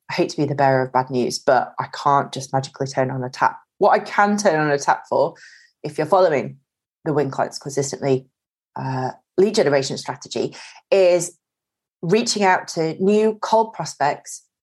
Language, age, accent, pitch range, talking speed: English, 30-49, British, 135-175 Hz, 180 wpm